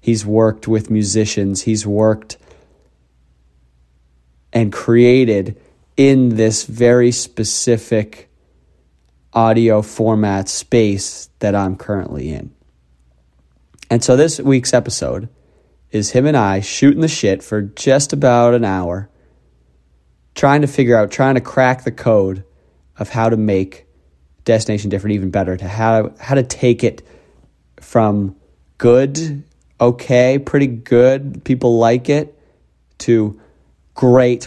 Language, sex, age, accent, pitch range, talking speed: English, male, 30-49, American, 95-120 Hz, 120 wpm